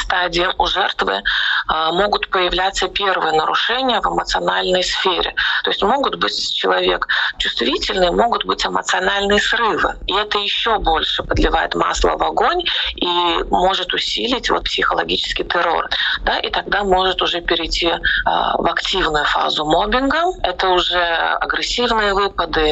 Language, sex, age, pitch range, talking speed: Russian, female, 30-49, 175-230 Hz, 130 wpm